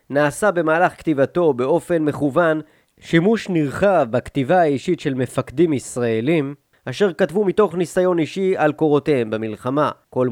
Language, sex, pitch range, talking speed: Hebrew, male, 140-175 Hz, 120 wpm